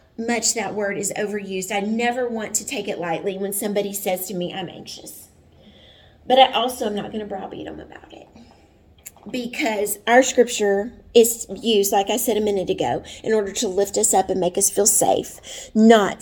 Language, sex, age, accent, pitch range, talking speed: English, female, 30-49, American, 195-235 Hz, 195 wpm